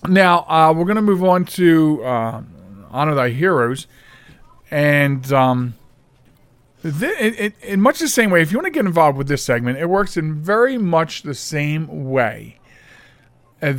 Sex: male